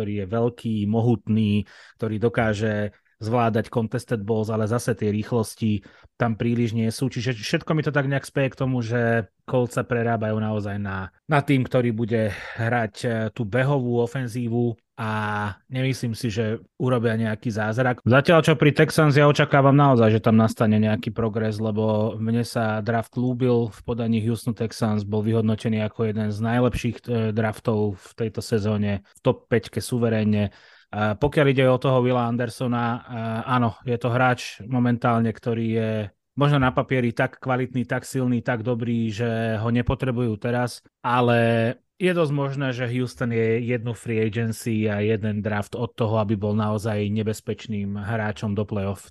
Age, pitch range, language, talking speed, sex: 30-49, 110-125 Hz, Slovak, 160 wpm, male